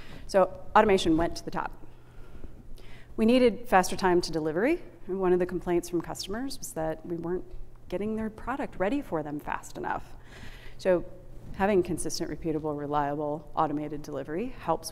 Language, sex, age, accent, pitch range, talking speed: English, female, 30-49, American, 155-185 Hz, 155 wpm